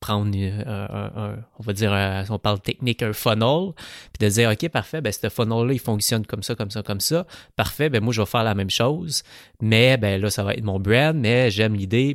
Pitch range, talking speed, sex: 110-145 Hz, 240 wpm, male